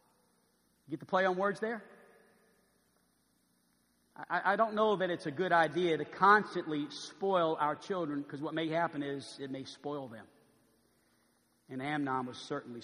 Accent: American